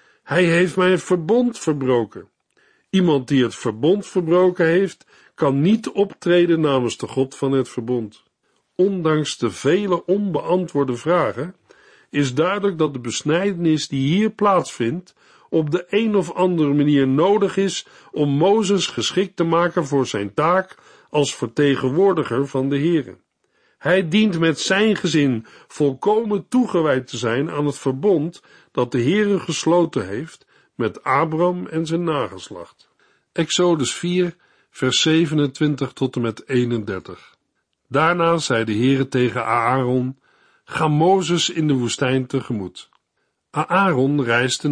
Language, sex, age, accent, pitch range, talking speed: Dutch, male, 50-69, Dutch, 130-180 Hz, 130 wpm